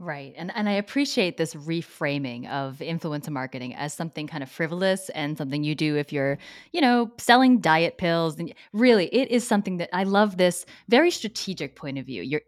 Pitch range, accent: 155-215 Hz, American